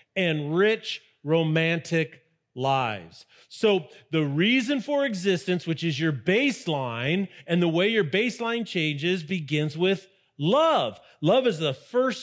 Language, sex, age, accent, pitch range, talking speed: English, male, 40-59, American, 155-205 Hz, 130 wpm